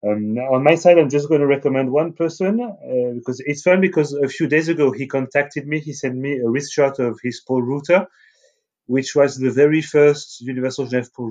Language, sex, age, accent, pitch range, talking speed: English, male, 30-49, French, 120-145 Hz, 220 wpm